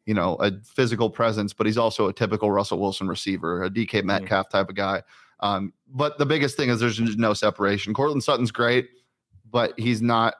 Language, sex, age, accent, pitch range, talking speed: English, male, 30-49, American, 105-125 Hz, 195 wpm